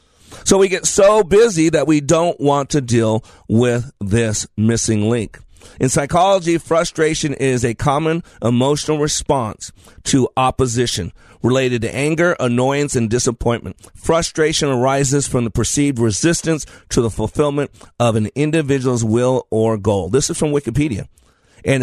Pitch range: 115-160 Hz